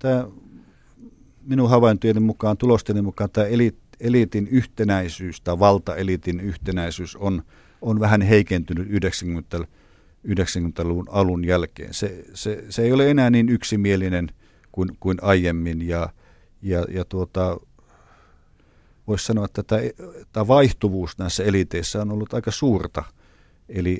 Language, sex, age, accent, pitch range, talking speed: Finnish, male, 50-69, native, 90-110 Hz, 120 wpm